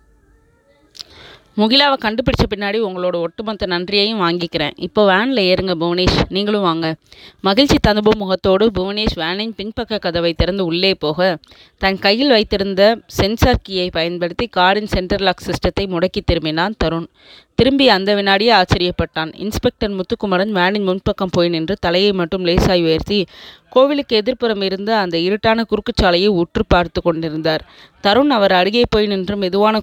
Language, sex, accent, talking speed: Tamil, female, native, 130 wpm